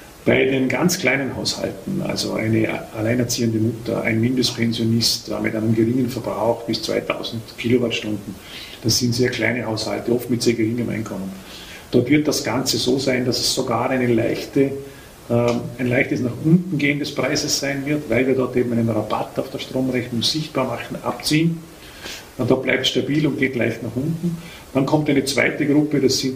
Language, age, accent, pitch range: German, 40-59, Austrian, 115-135 Hz